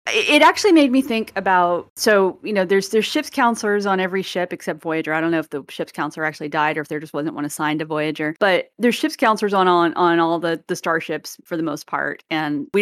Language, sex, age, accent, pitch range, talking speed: English, female, 30-49, American, 170-215 Hz, 250 wpm